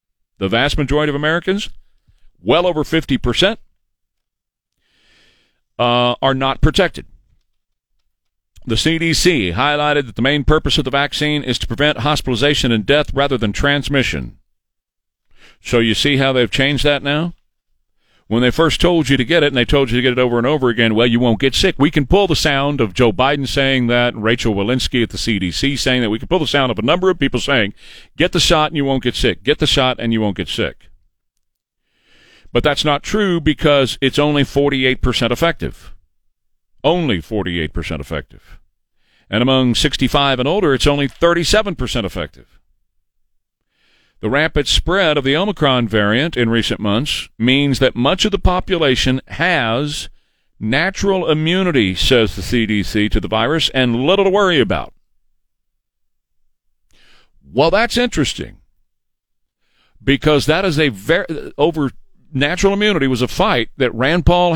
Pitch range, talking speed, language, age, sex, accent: 115-150 Hz, 165 wpm, English, 40-59, male, American